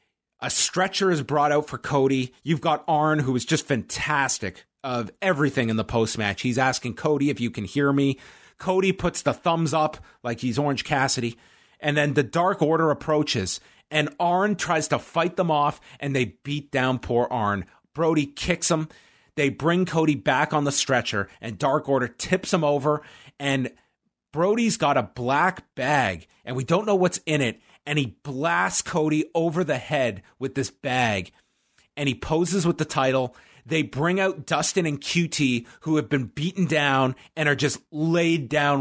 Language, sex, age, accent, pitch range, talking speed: English, male, 40-59, American, 125-160 Hz, 180 wpm